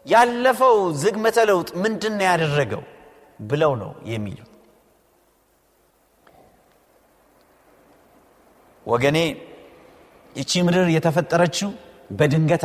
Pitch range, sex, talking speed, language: 160-260 Hz, male, 55 wpm, Amharic